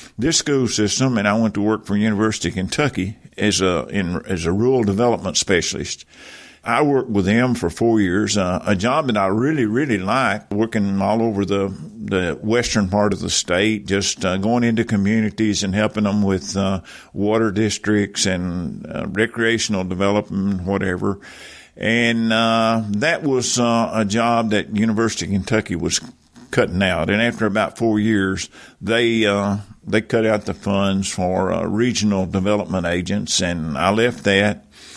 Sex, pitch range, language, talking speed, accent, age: male, 100-115 Hz, English, 165 wpm, American, 50-69